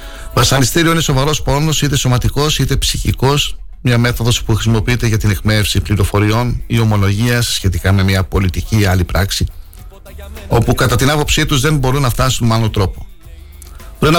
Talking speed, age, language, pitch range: 160 wpm, 60-79, Greek, 95-130 Hz